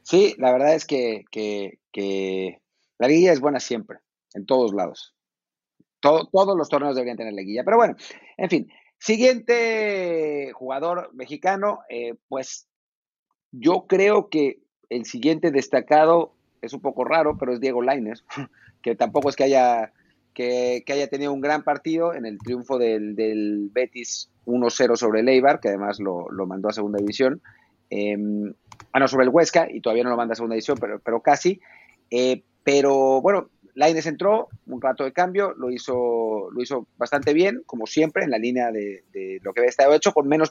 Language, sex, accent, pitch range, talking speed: Spanish, male, Mexican, 120-165 Hz, 180 wpm